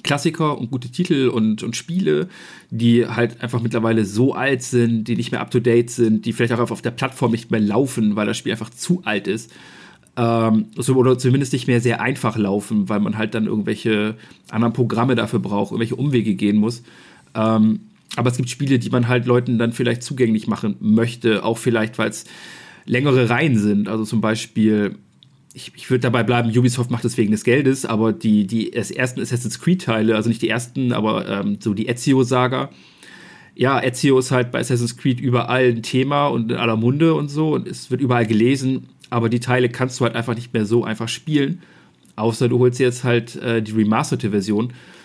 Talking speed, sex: 200 wpm, male